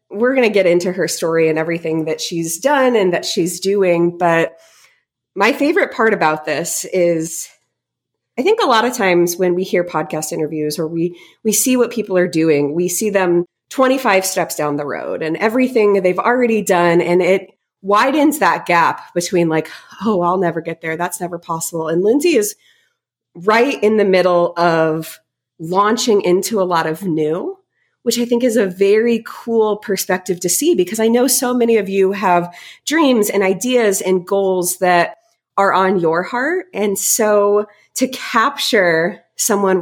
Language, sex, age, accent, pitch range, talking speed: English, female, 30-49, American, 170-220 Hz, 175 wpm